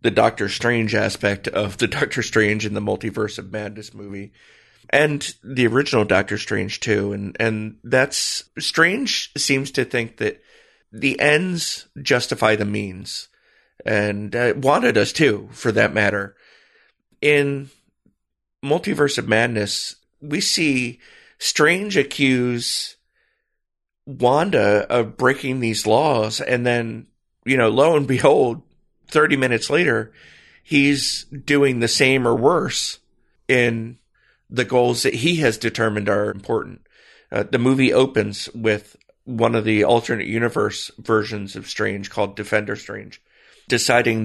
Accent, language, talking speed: American, English, 130 wpm